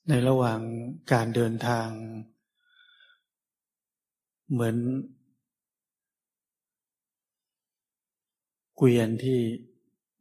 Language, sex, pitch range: Thai, male, 115-135 Hz